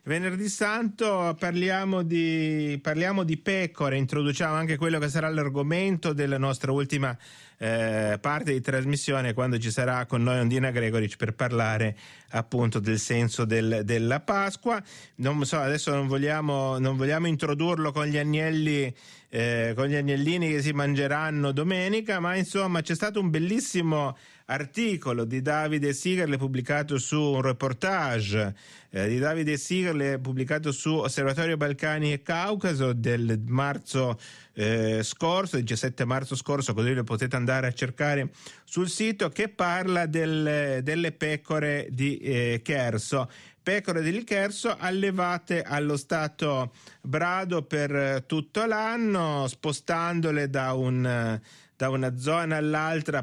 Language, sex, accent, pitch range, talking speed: Italian, male, native, 130-165 Hz, 135 wpm